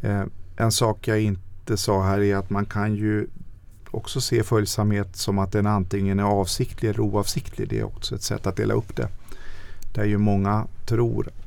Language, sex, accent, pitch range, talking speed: Swedish, male, native, 95-110 Hz, 185 wpm